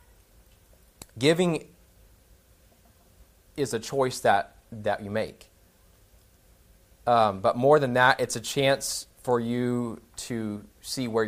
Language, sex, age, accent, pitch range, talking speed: English, male, 20-39, American, 90-120 Hz, 110 wpm